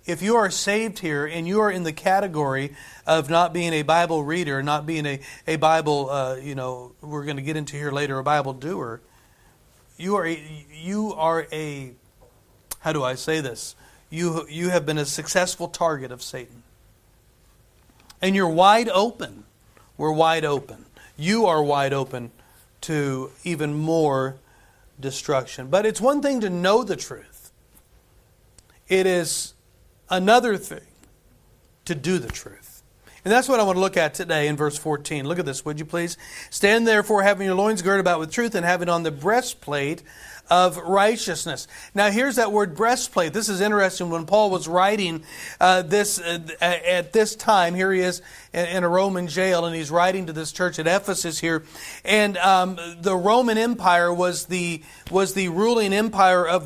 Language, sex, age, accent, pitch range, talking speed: English, male, 40-59, American, 150-195 Hz, 175 wpm